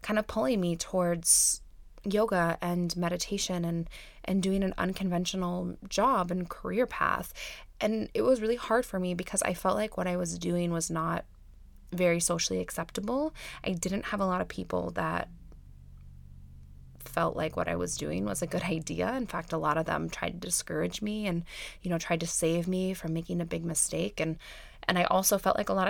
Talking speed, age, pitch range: 195 wpm, 20-39, 160-210 Hz